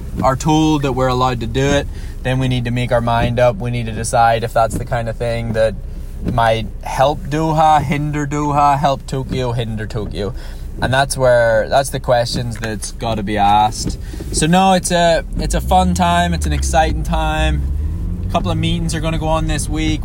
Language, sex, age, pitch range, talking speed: English, male, 20-39, 95-130 Hz, 210 wpm